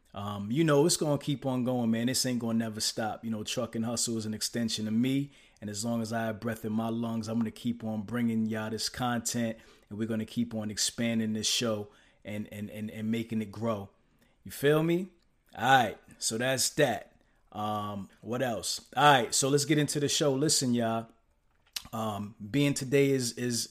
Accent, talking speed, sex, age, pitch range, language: American, 210 wpm, male, 20-39, 110-120 Hz, English